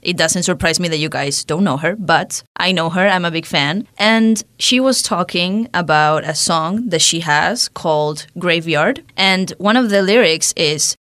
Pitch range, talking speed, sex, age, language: 160-200 Hz, 195 wpm, female, 20-39, English